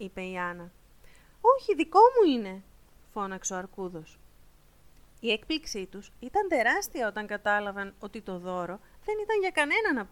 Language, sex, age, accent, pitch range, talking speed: Greek, female, 30-49, native, 190-310 Hz, 150 wpm